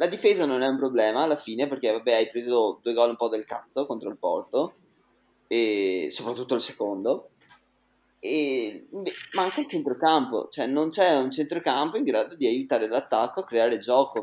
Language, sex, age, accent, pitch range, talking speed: Italian, male, 20-39, native, 115-150 Hz, 175 wpm